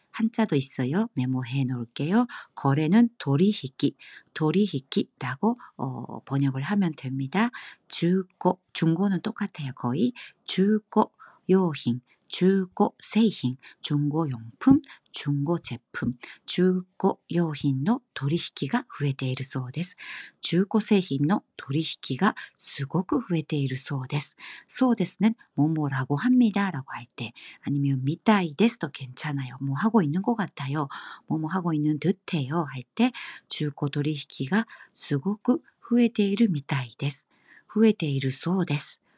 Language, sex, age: Korean, female, 50-69